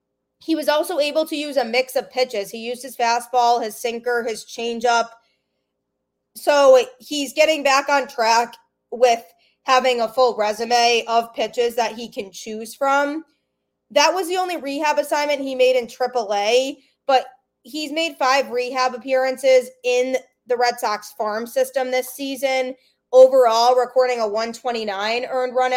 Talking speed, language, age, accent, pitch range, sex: 155 wpm, English, 20-39, American, 225-265 Hz, female